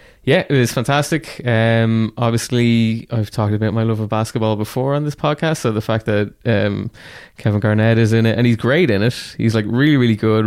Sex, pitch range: male, 105-120 Hz